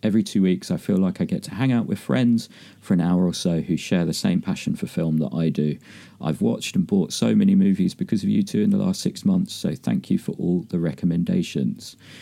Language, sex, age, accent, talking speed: English, male, 40-59, British, 250 wpm